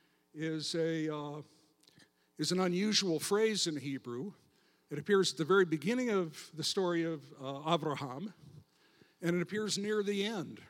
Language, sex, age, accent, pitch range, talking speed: English, male, 60-79, American, 155-200 Hz, 150 wpm